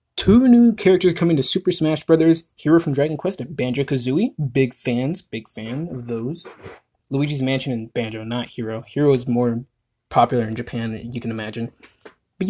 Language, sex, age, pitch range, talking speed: English, male, 20-39, 130-200 Hz, 180 wpm